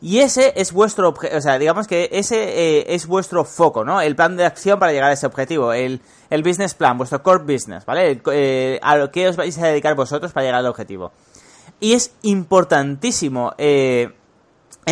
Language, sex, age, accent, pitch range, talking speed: Spanish, male, 20-39, Spanish, 150-200 Hz, 195 wpm